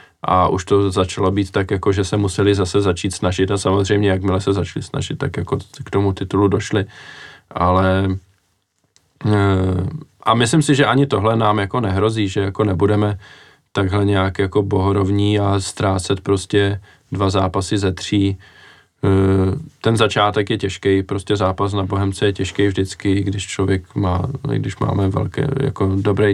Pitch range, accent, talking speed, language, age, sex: 95-110 Hz, native, 155 wpm, Czech, 20-39, male